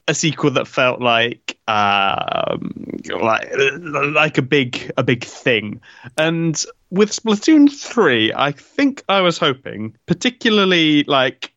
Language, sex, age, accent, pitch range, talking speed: English, male, 30-49, British, 120-160 Hz, 125 wpm